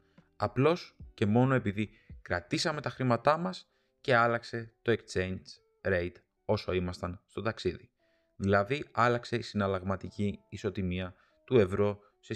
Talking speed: 120 wpm